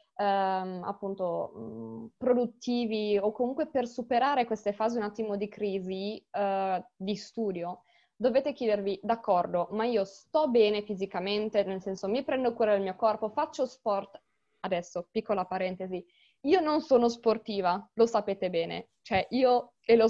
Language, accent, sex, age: Italian, native, female, 20-39